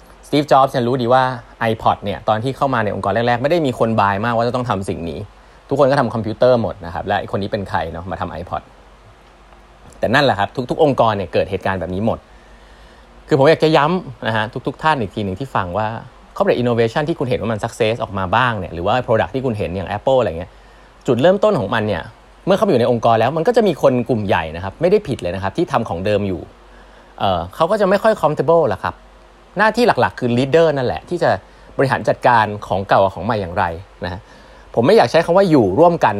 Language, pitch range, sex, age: Thai, 100-135 Hz, male, 20-39